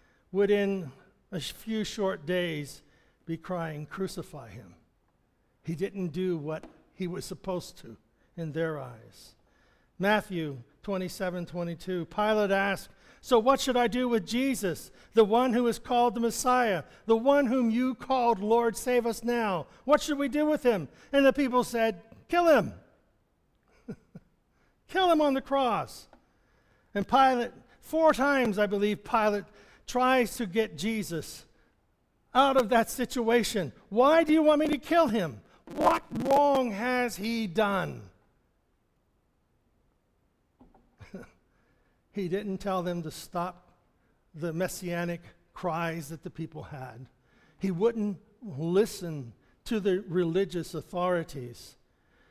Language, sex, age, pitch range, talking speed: English, male, 60-79, 170-240 Hz, 130 wpm